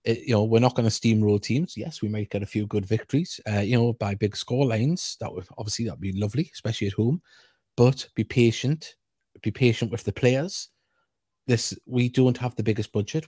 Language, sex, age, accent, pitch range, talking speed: English, male, 30-49, British, 105-120 Hz, 215 wpm